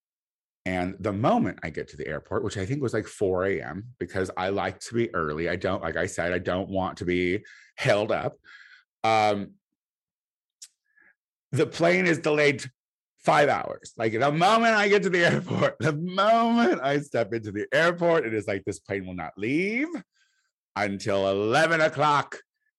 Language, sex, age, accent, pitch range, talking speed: English, male, 30-49, American, 95-155 Hz, 175 wpm